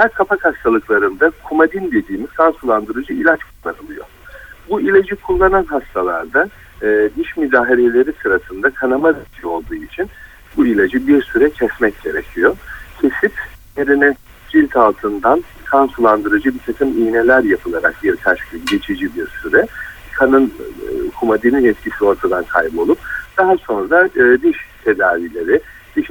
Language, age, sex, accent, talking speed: Turkish, 60-79, male, native, 115 wpm